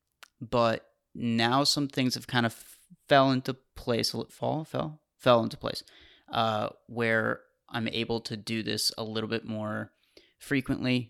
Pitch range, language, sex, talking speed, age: 110-125 Hz, English, male, 150 wpm, 30-49